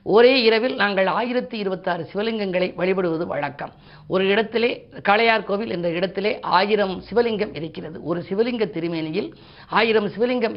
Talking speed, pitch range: 125 wpm, 175-220 Hz